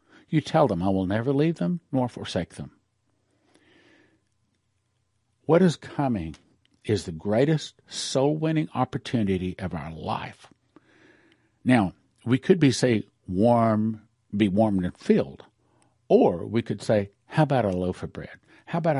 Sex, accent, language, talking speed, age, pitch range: male, American, English, 140 wpm, 60-79, 100-130 Hz